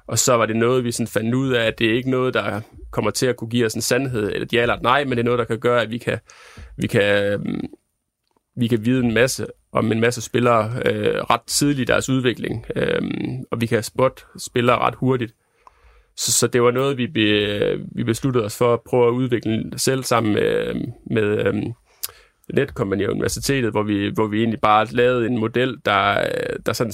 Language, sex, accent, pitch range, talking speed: Danish, male, native, 110-125 Hz, 215 wpm